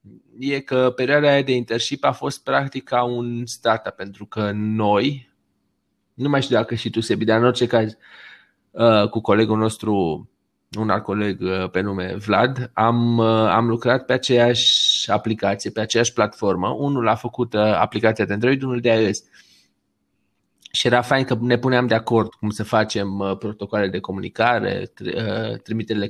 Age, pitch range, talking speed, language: 20-39, 100-120 Hz, 155 wpm, Romanian